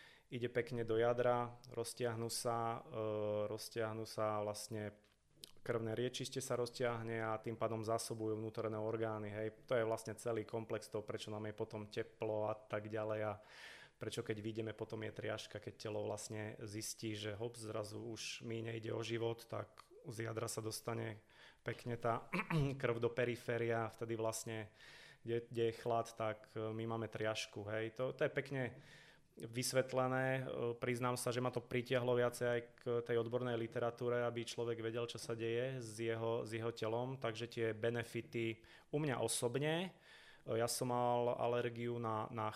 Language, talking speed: Slovak, 165 wpm